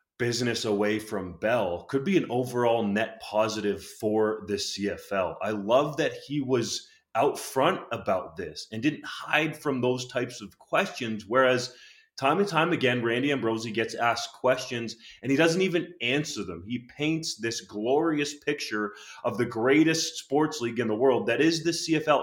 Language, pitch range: English, 110-140 Hz